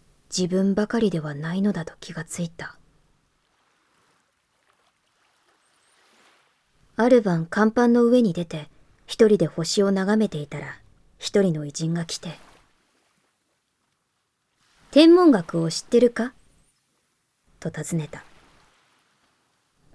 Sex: male